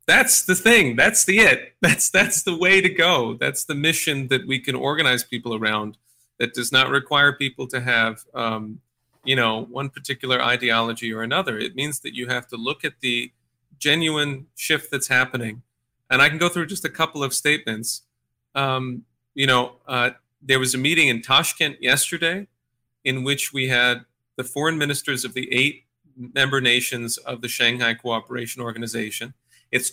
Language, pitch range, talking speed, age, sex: English, 120-145 Hz, 175 wpm, 40-59, male